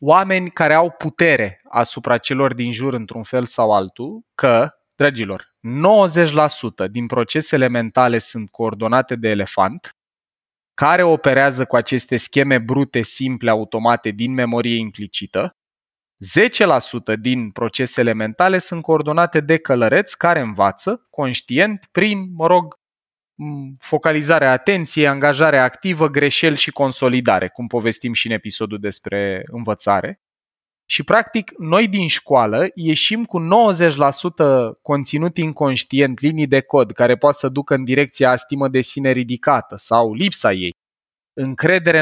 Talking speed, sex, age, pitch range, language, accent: 125 wpm, male, 20-39, 120-165 Hz, Romanian, native